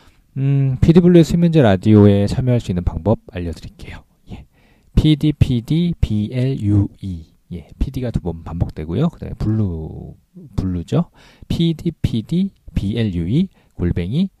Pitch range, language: 90-130 Hz, Korean